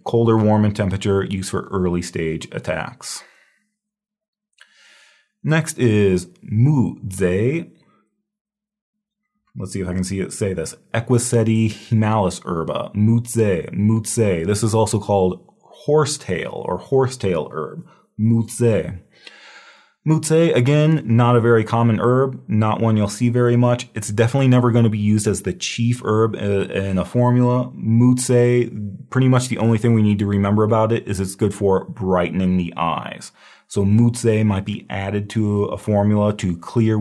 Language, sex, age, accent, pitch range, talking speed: English, male, 30-49, American, 95-120 Hz, 145 wpm